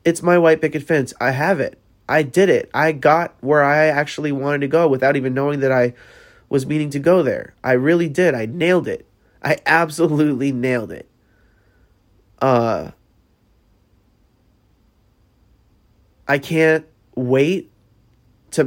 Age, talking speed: 30-49, 140 wpm